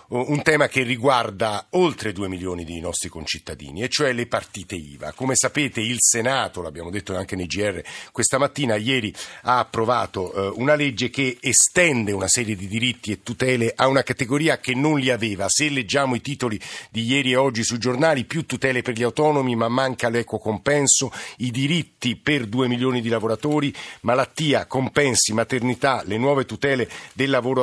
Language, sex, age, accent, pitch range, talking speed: Italian, male, 50-69, native, 110-135 Hz, 175 wpm